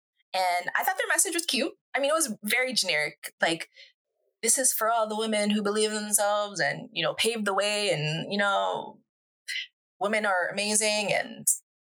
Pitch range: 190-275 Hz